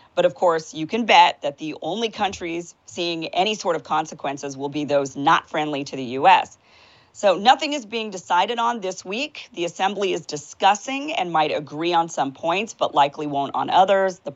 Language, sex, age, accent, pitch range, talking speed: English, female, 40-59, American, 150-195 Hz, 195 wpm